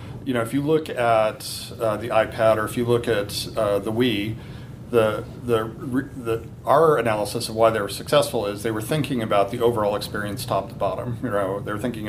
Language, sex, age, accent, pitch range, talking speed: English, male, 40-59, American, 110-125 Hz, 215 wpm